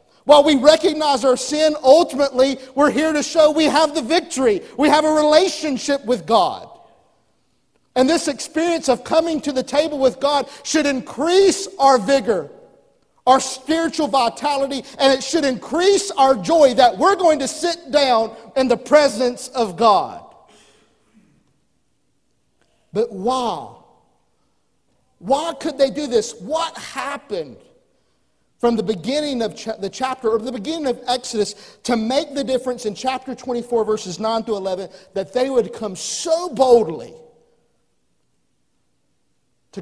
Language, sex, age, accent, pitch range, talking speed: English, male, 50-69, American, 220-290 Hz, 140 wpm